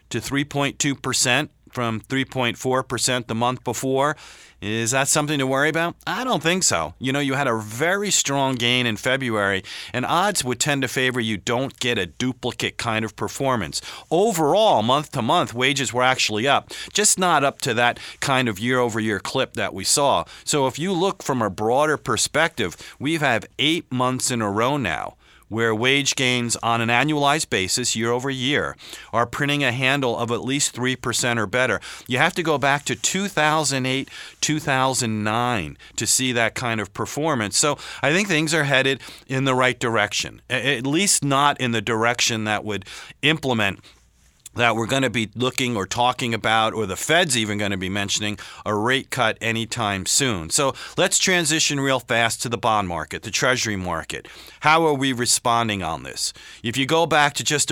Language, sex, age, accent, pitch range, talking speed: English, male, 40-59, American, 115-140 Hz, 185 wpm